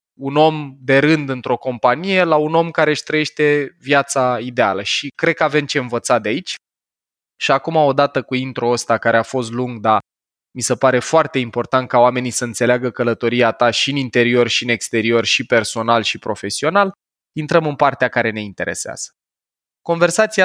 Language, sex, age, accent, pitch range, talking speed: Romanian, male, 20-39, native, 120-155 Hz, 175 wpm